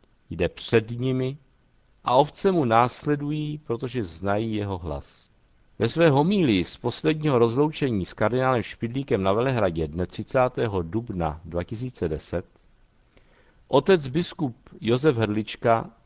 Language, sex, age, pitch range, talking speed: Czech, male, 50-69, 95-135 Hz, 110 wpm